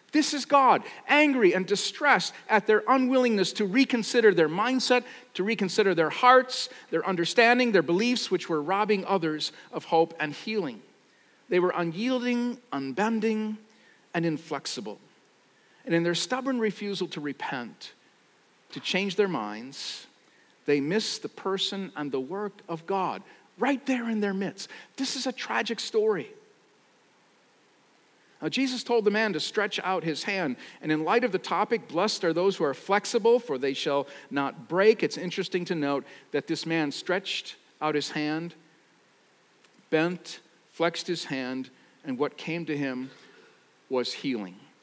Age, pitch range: 50-69, 155-225 Hz